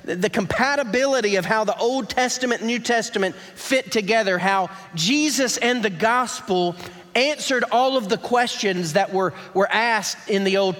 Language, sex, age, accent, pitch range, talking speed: English, male, 40-59, American, 185-245 Hz, 160 wpm